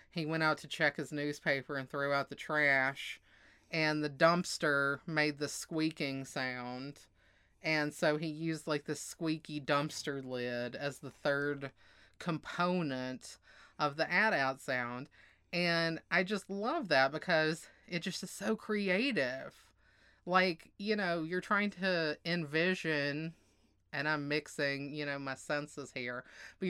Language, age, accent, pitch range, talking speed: English, 30-49, American, 135-170 Hz, 140 wpm